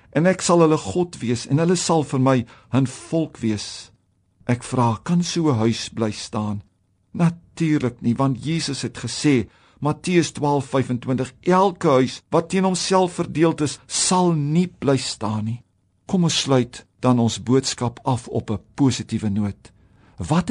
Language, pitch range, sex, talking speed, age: English, 115-160 Hz, male, 160 wpm, 50-69